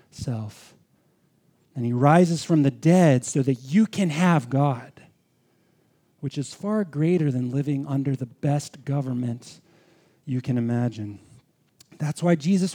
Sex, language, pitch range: male, English, 130-180 Hz